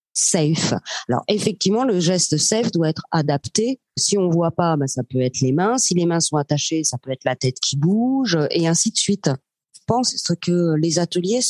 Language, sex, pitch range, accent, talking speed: French, female, 160-200 Hz, French, 210 wpm